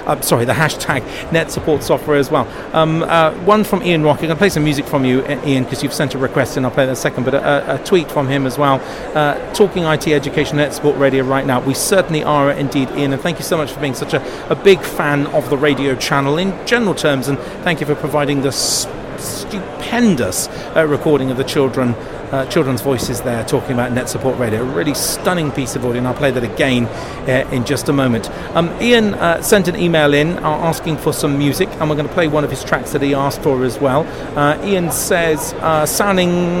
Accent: British